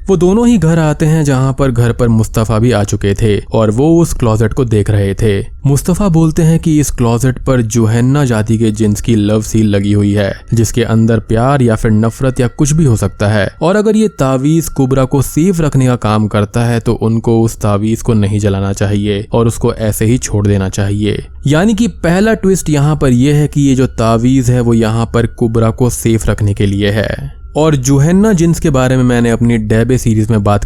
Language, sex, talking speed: Hindi, male, 225 wpm